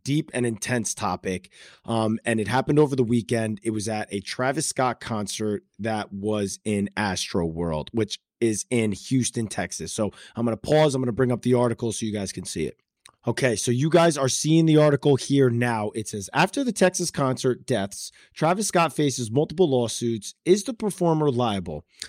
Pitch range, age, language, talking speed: 110-150 Hz, 30-49, English, 195 wpm